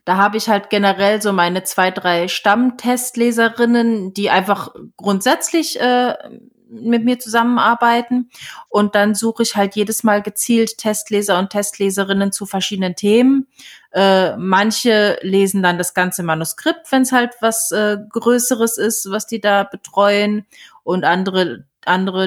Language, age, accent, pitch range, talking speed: German, 30-49, German, 180-220 Hz, 140 wpm